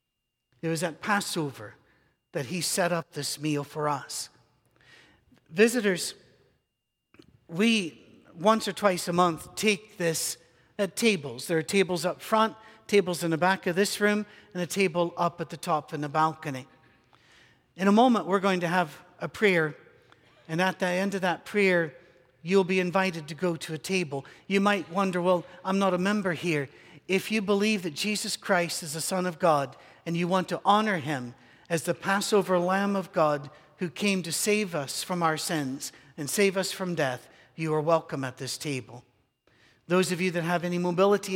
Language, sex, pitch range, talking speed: English, male, 155-195 Hz, 185 wpm